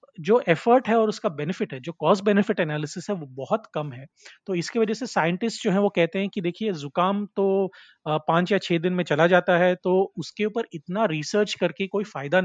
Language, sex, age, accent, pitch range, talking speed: Hindi, male, 30-49, native, 160-200 Hz, 220 wpm